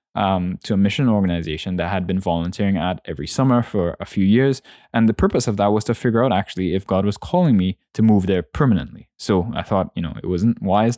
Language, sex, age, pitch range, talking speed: English, male, 10-29, 90-110 Hz, 235 wpm